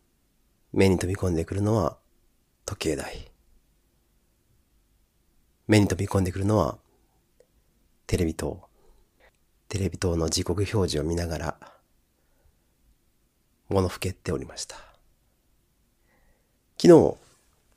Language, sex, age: Japanese, male, 40-59